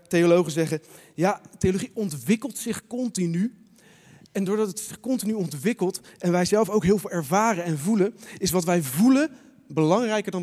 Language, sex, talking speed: Dutch, male, 160 wpm